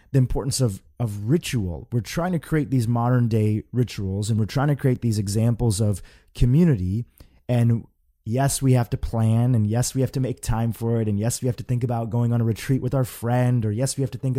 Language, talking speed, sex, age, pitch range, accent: English, 240 wpm, male, 30-49, 110-135 Hz, American